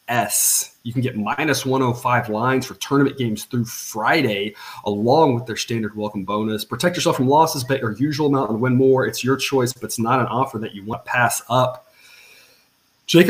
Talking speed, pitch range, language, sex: 195 wpm, 115-135 Hz, English, male